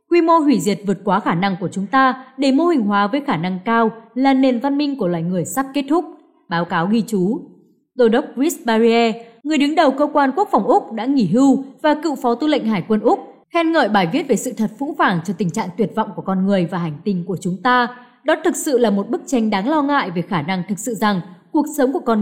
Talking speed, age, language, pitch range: 265 wpm, 20-39, Vietnamese, 200-280 Hz